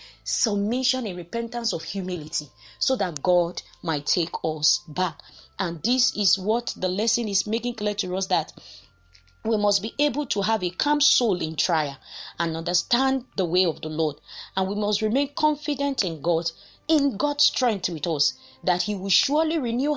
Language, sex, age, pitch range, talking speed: English, female, 30-49, 160-220 Hz, 175 wpm